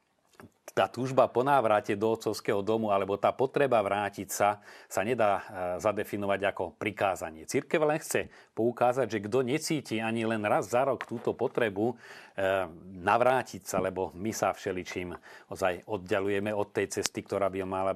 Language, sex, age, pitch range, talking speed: Slovak, male, 40-59, 95-110 Hz, 150 wpm